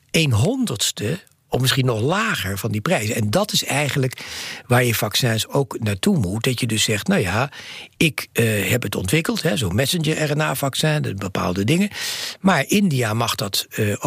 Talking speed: 165 wpm